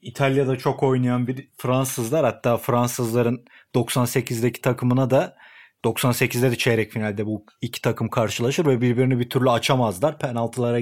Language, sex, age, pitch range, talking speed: Turkish, male, 30-49, 120-150 Hz, 135 wpm